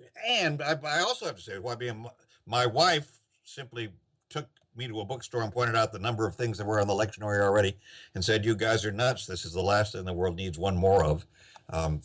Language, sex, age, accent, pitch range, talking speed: English, male, 60-79, American, 95-120 Hz, 230 wpm